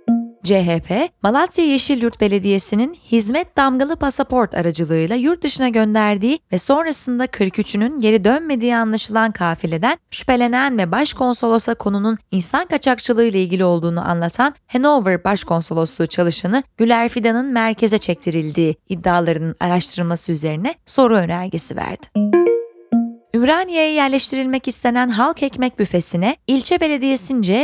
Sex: female